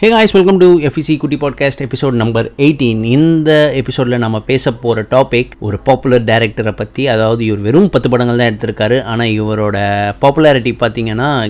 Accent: native